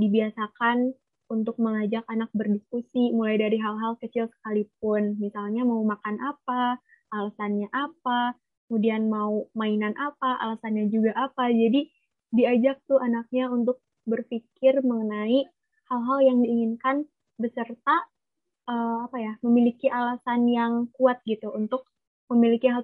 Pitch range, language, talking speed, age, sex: 225-255 Hz, Indonesian, 120 wpm, 20-39, female